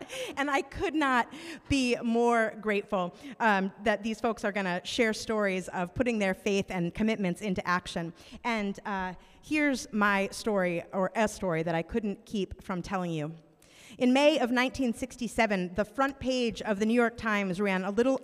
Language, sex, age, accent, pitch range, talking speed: English, female, 30-49, American, 180-230 Hz, 180 wpm